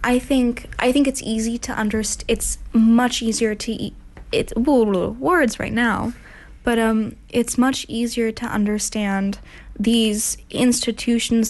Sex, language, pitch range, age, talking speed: female, English, 205-235 Hz, 10-29, 135 wpm